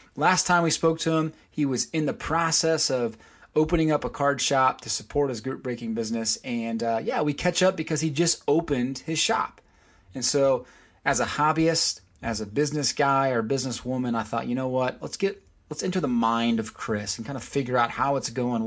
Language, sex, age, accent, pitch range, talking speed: English, male, 30-49, American, 110-145 Hz, 220 wpm